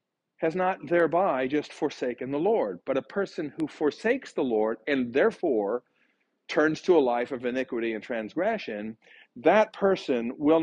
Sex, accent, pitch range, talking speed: male, American, 130-185 Hz, 150 wpm